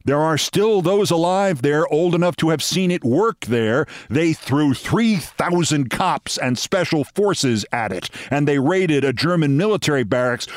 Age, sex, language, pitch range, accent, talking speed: 50-69, male, English, 140-180 Hz, American, 170 wpm